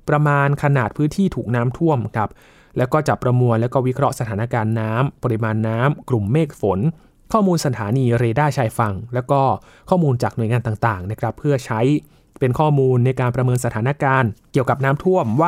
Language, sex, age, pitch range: Thai, male, 20-39, 120-150 Hz